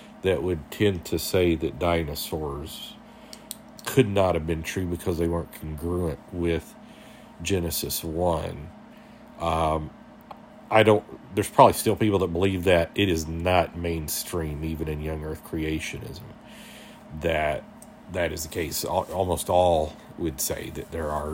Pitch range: 85-110 Hz